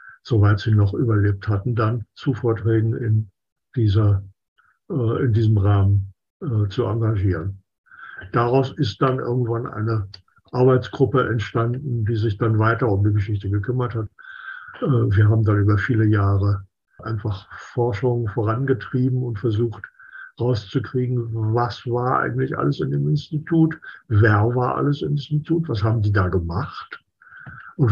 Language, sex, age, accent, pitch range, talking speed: German, male, 60-79, German, 105-130 Hz, 130 wpm